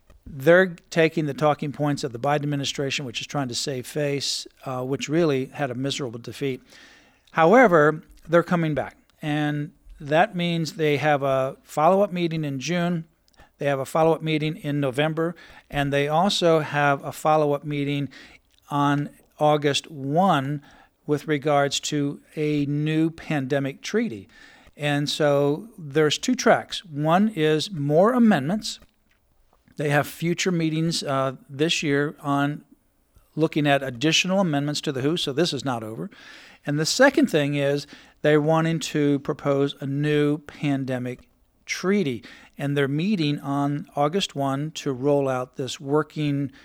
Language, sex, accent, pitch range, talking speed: English, male, American, 140-165 Hz, 145 wpm